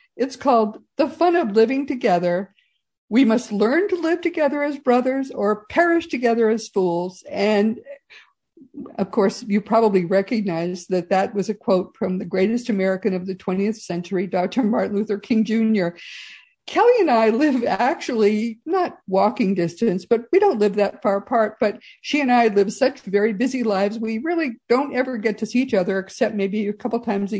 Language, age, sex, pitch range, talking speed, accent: English, 50-69, female, 195-255 Hz, 180 wpm, American